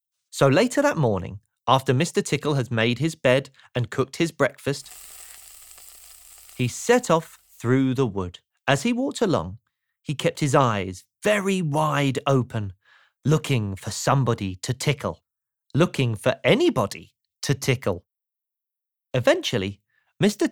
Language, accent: English, British